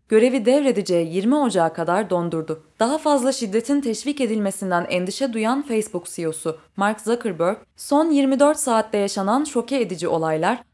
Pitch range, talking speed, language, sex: 180-250 Hz, 135 wpm, Turkish, female